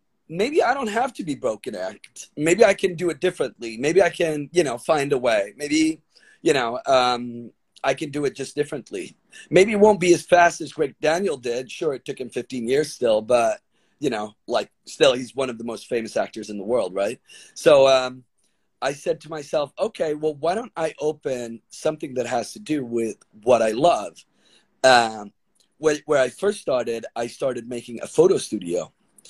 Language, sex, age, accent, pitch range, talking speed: English, male, 40-59, American, 115-165 Hz, 200 wpm